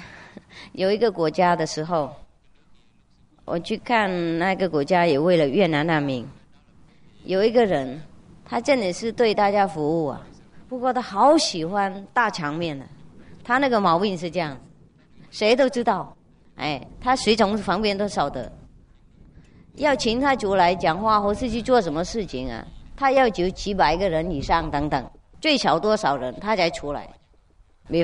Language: English